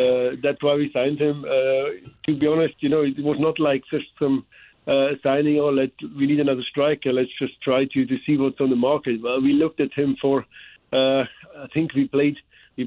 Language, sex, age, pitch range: English, male, 50-69, 130-150 Hz